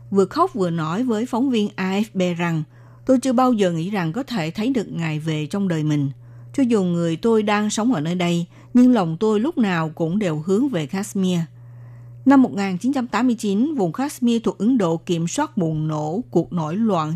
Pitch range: 165-225 Hz